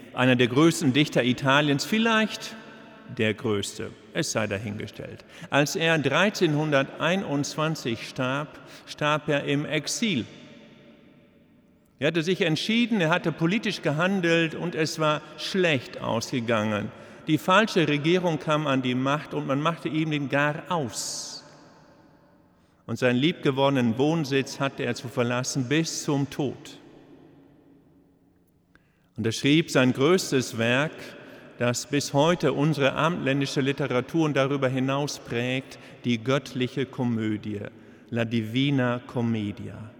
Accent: German